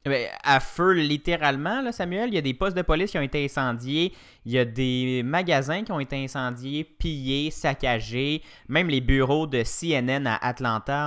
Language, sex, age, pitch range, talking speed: French, male, 20-39, 115-145 Hz, 185 wpm